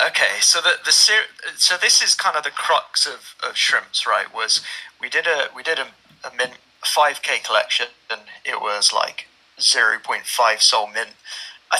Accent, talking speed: British, 190 wpm